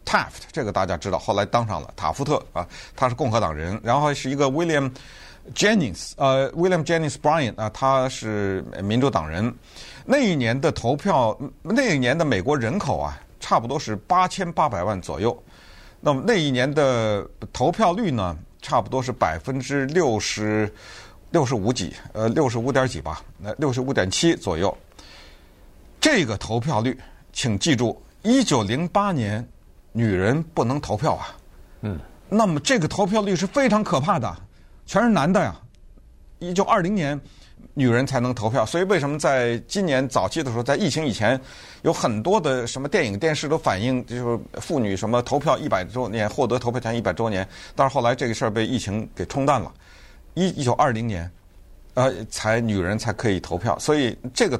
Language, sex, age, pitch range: Chinese, male, 50-69, 105-150 Hz